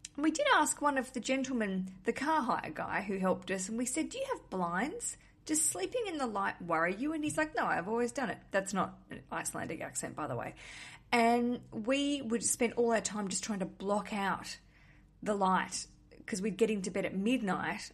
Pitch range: 185-235 Hz